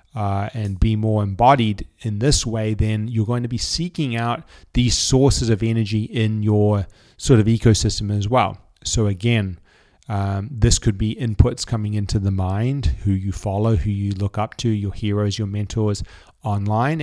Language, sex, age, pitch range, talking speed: English, male, 30-49, 105-120 Hz, 175 wpm